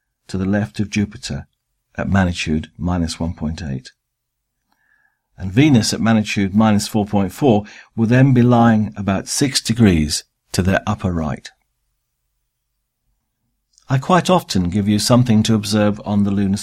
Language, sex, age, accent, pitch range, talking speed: English, male, 50-69, British, 100-125 Hz, 135 wpm